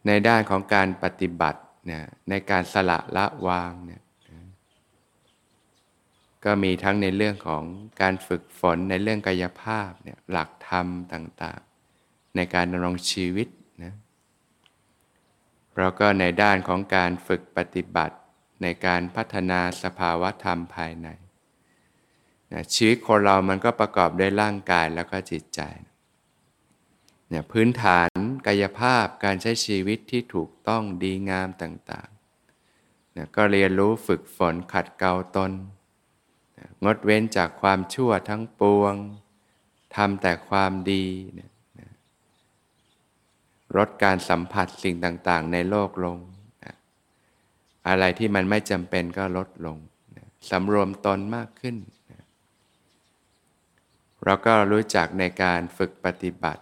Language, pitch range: Thai, 90-105 Hz